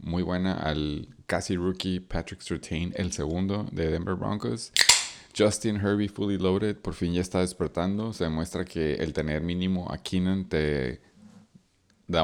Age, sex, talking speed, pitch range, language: 30-49, male, 150 wpm, 80-95 Hz, Spanish